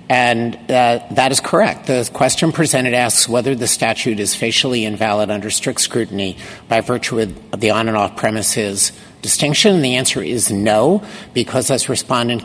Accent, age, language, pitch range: American, 50-69, English, 110-140 Hz